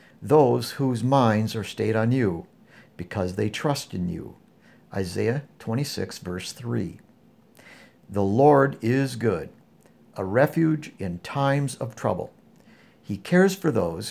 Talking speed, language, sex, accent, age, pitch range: 130 wpm, English, male, American, 60-79, 100-140 Hz